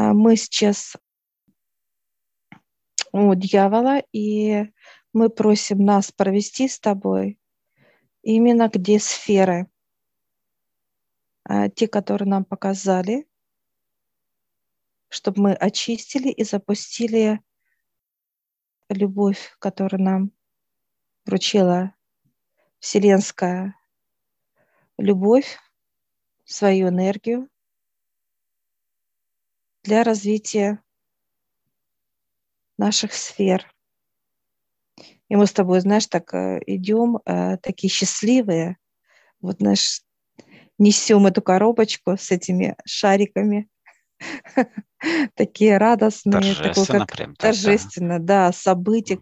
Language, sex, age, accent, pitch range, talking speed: Russian, female, 40-59, native, 190-220 Hz, 70 wpm